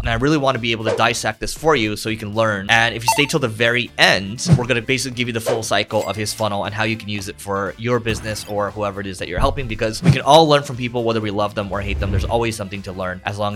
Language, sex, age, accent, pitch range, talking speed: English, male, 20-39, American, 110-140 Hz, 325 wpm